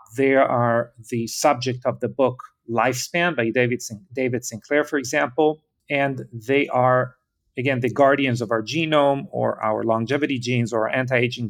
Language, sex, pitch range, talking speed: English, male, 120-135 Hz, 150 wpm